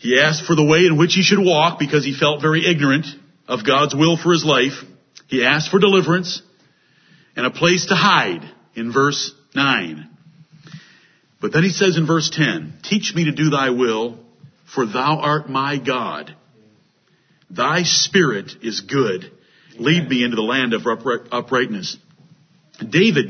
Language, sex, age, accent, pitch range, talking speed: English, male, 50-69, American, 135-180 Hz, 160 wpm